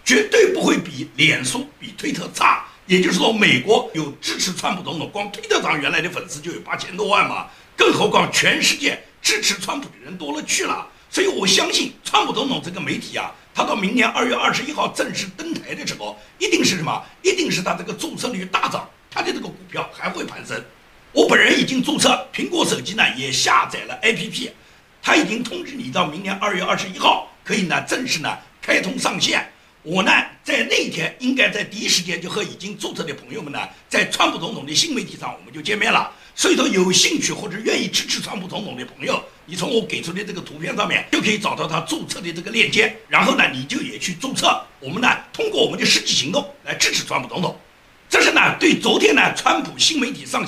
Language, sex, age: Chinese, male, 60-79